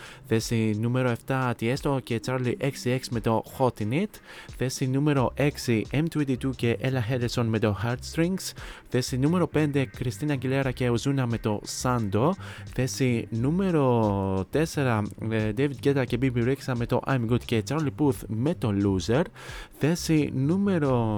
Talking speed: 140 wpm